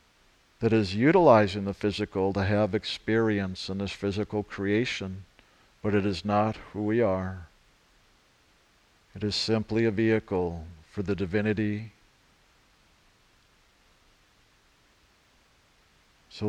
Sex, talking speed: male, 100 wpm